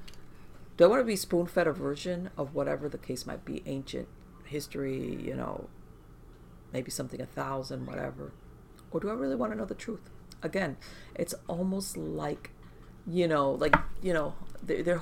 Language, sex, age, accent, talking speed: English, female, 50-69, American, 170 wpm